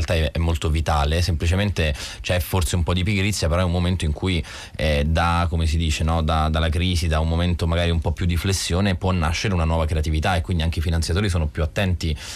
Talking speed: 235 wpm